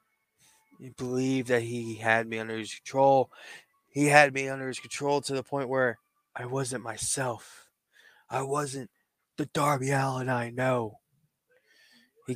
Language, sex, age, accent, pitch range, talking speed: English, male, 20-39, American, 115-135 Hz, 145 wpm